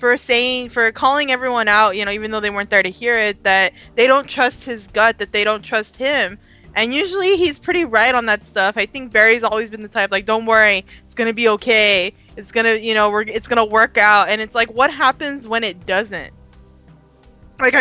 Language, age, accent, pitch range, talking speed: English, 20-39, American, 210-250 Hz, 225 wpm